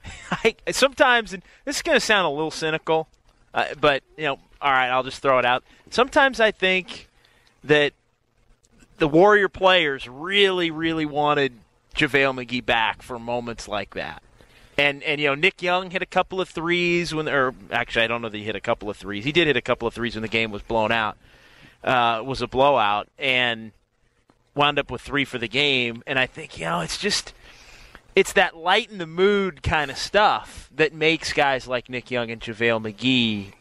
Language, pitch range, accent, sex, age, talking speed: English, 120-160 Hz, American, male, 30-49, 200 wpm